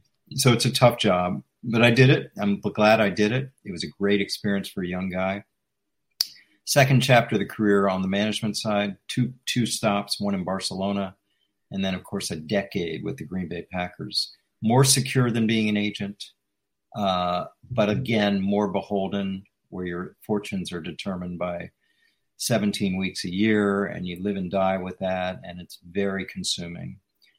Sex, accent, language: male, American, English